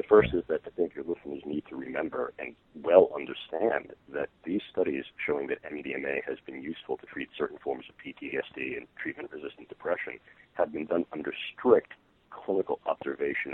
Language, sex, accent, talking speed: English, male, American, 175 wpm